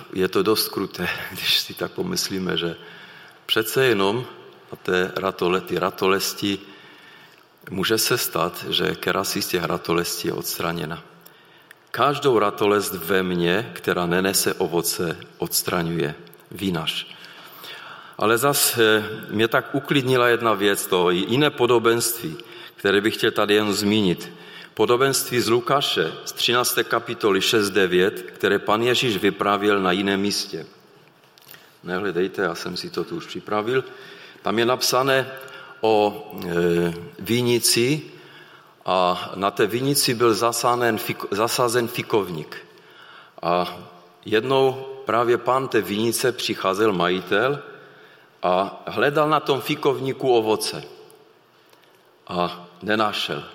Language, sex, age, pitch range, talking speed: Czech, male, 40-59, 90-120 Hz, 115 wpm